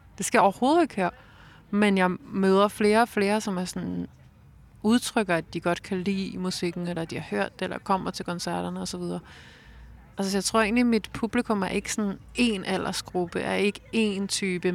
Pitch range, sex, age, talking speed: 180-205 Hz, female, 30-49, 205 wpm